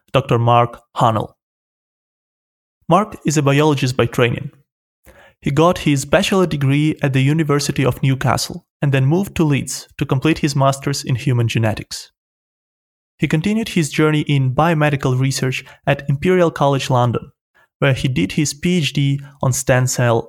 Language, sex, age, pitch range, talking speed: English, male, 30-49, 130-165 Hz, 150 wpm